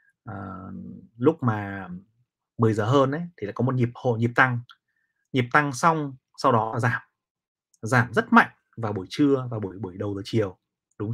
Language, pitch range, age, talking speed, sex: Vietnamese, 110-135 Hz, 30-49, 180 wpm, male